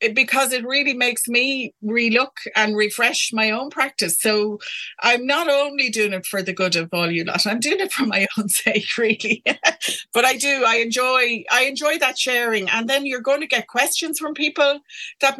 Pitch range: 195-250 Hz